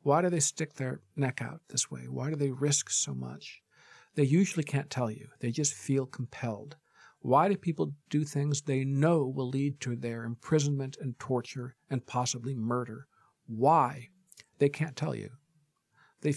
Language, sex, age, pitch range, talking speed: English, male, 50-69, 120-150 Hz, 170 wpm